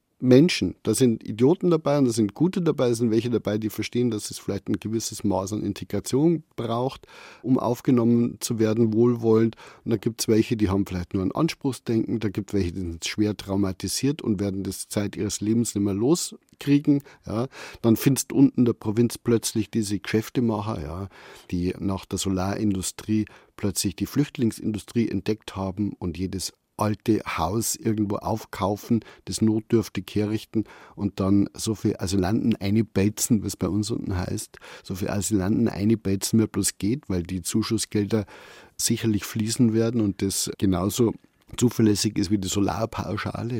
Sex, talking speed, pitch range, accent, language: male, 160 wpm, 100-115 Hz, German, German